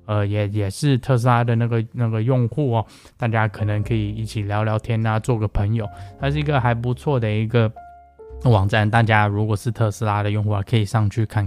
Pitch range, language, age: 105-130 Hz, Chinese, 10-29